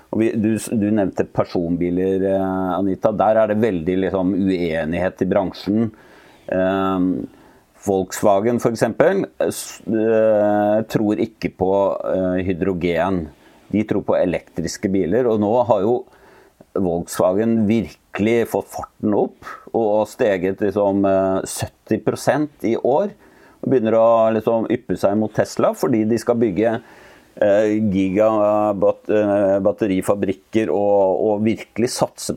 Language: English